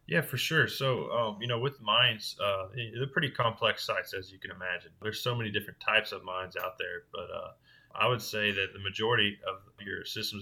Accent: American